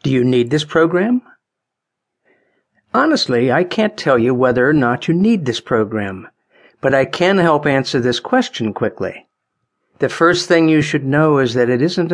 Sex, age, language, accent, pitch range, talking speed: male, 50-69, English, American, 120-170 Hz, 175 wpm